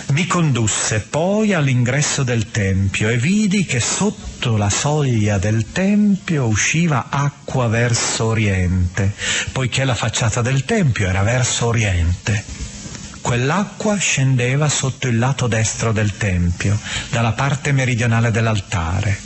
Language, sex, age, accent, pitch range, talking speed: Italian, male, 40-59, native, 105-150 Hz, 120 wpm